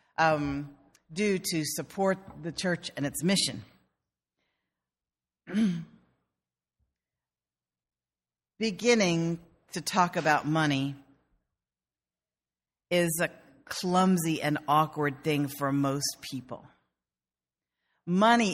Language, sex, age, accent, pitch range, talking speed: English, female, 50-69, American, 120-185 Hz, 80 wpm